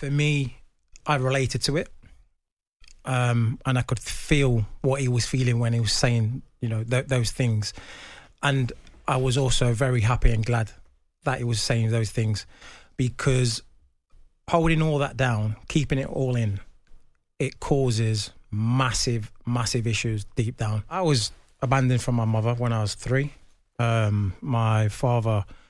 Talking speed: 155 wpm